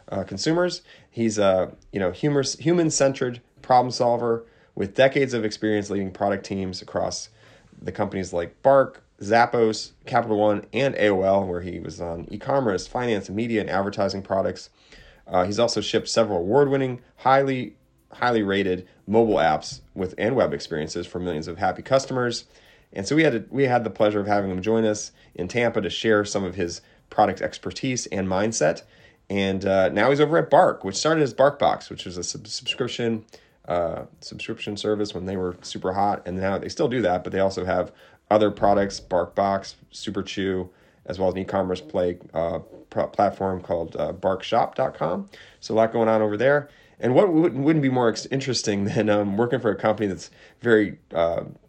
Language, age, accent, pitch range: English, 30-49, American, 95-120 Hz